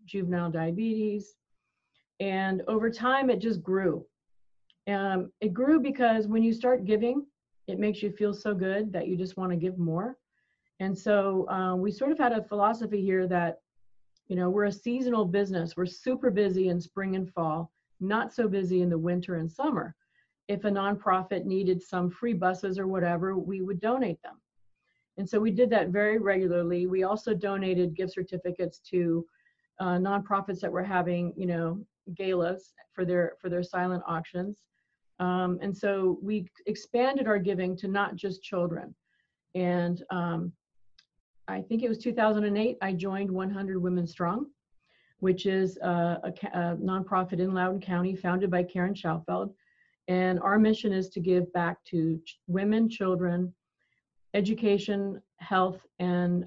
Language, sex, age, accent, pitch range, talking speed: English, female, 40-59, American, 180-205 Hz, 160 wpm